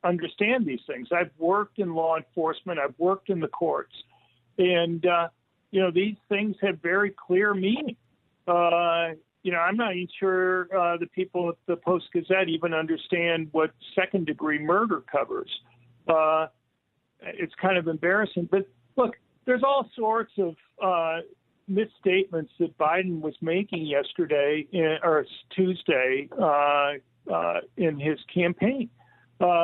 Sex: male